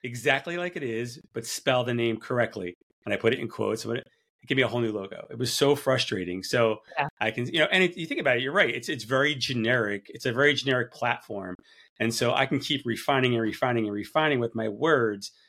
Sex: male